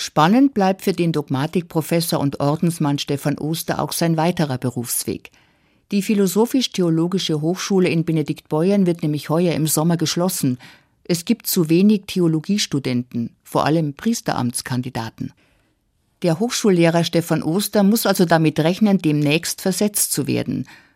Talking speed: 125 wpm